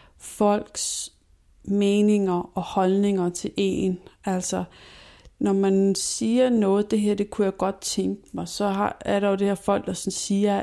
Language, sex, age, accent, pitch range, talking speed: Danish, female, 30-49, native, 185-205 Hz, 160 wpm